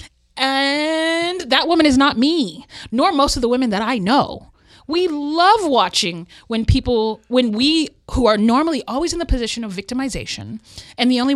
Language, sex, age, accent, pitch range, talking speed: English, female, 30-49, American, 190-265 Hz, 175 wpm